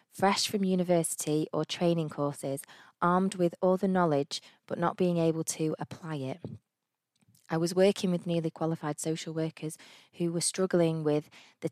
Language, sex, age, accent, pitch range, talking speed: English, female, 20-39, British, 155-185 Hz, 160 wpm